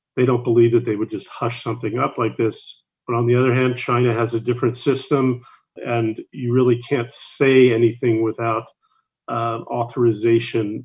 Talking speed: 170 wpm